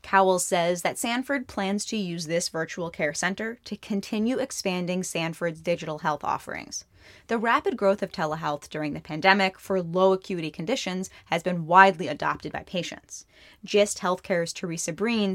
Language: English